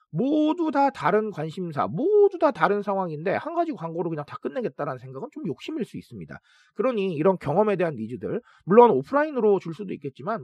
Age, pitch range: 40-59, 150-225 Hz